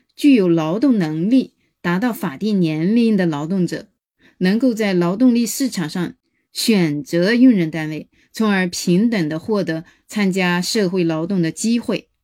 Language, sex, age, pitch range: Chinese, female, 20-39, 175-245 Hz